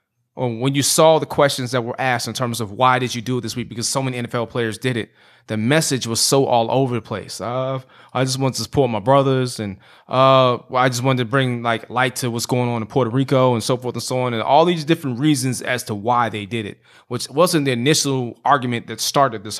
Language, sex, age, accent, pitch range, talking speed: English, male, 20-39, American, 115-135 Hz, 250 wpm